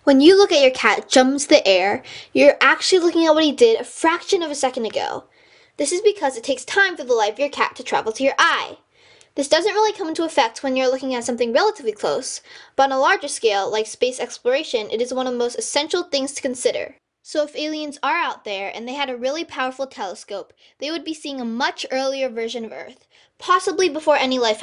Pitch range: 235-335 Hz